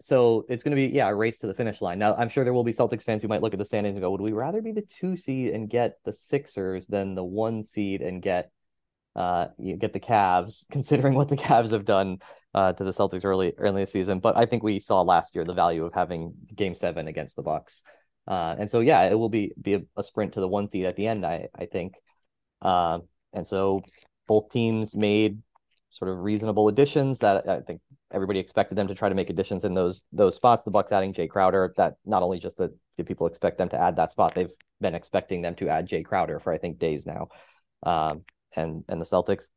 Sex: male